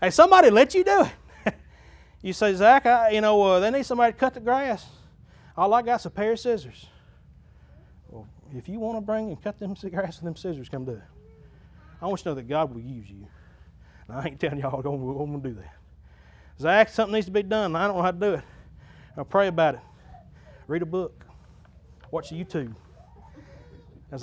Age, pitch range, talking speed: 30-49, 110-180 Hz, 220 wpm